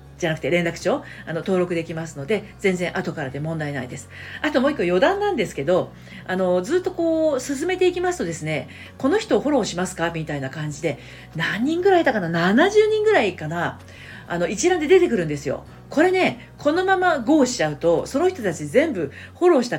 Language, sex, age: Japanese, female, 40-59